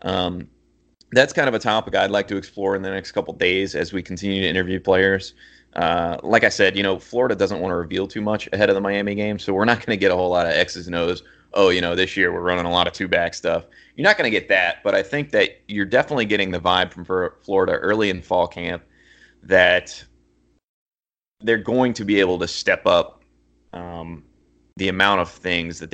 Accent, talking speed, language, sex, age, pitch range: American, 235 wpm, English, male, 30-49, 85-95 Hz